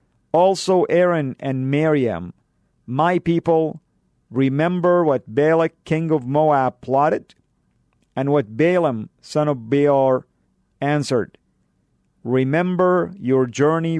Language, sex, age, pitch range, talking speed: English, male, 50-69, 130-170 Hz, 100 wpm